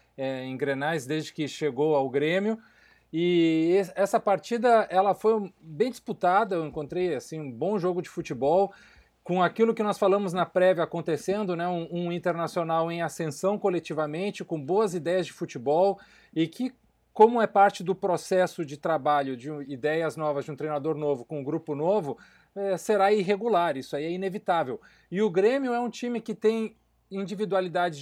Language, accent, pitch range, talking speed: Portuguese, Brazilian, 160-200 Hz, 165 wpm